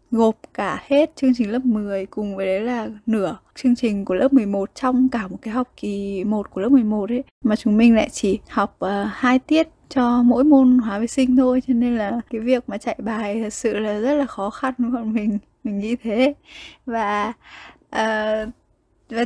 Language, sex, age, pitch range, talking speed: Vietnamese, female, 10-29, 210-250 Hz, 210 wpm